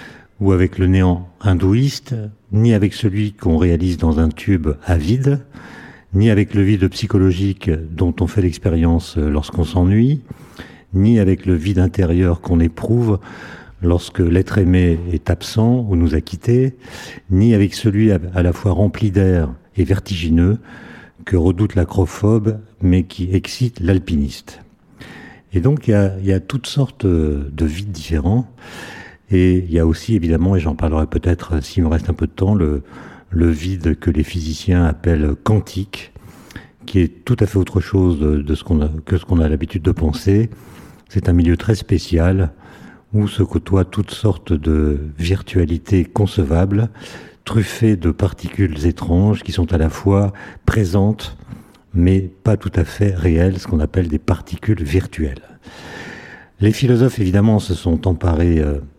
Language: French